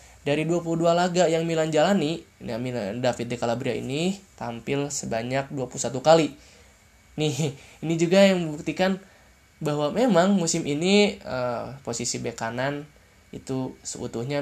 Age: 10-29